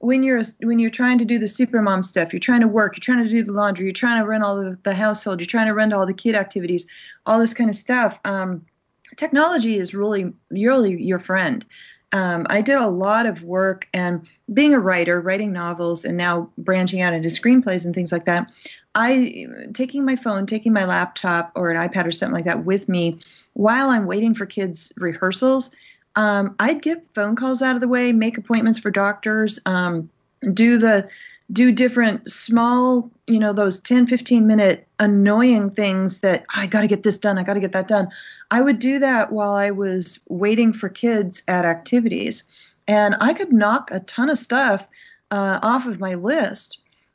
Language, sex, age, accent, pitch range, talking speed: English, female, 30-49, American, 190-235 Hz, 205 wpm